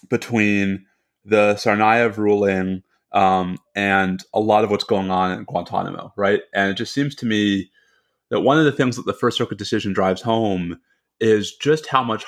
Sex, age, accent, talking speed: male, 30-49, American, 180 wpm